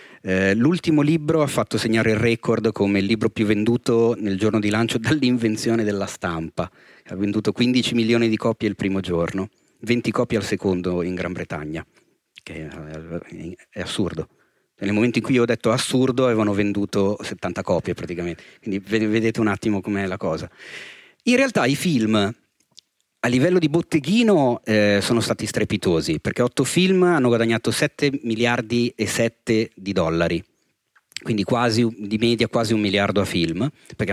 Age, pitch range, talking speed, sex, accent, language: 40-59, 95-120 Hz, 160 wpm, male, native, Italian